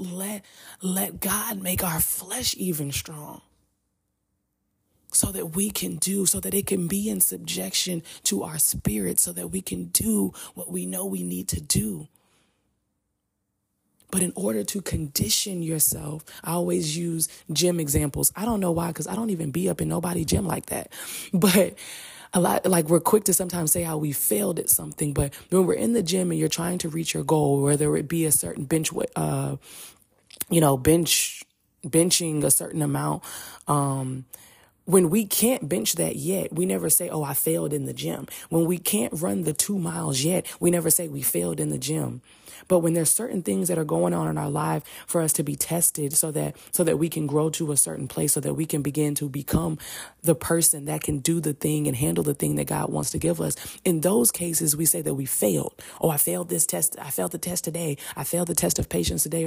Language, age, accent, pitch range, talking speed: English, 20-39, American, 145-180 Hz, 215 wpm